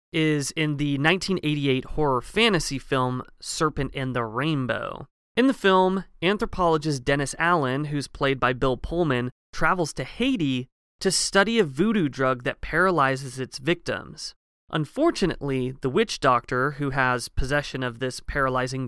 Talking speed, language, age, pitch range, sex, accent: 140 wpm, English, 30-49, 130-175 Hz, male, American